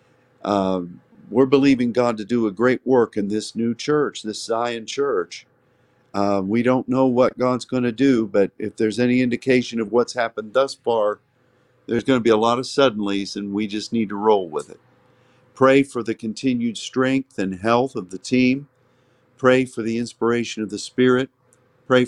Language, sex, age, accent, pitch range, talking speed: English, male, 50-69, American, 115-130 Hz, 190 wpm